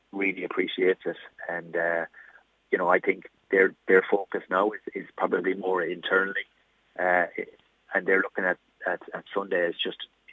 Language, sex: English, male